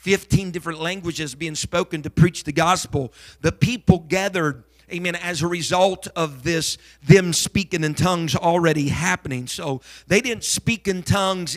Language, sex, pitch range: English, male, 150-180 Hz